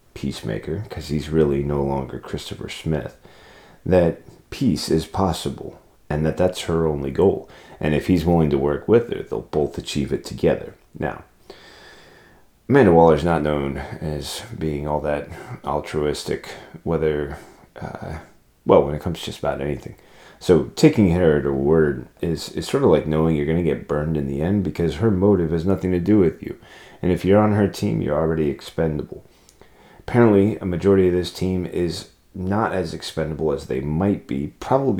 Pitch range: 75-95 Hz